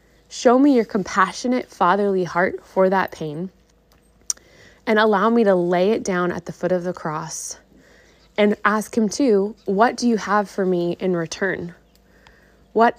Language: English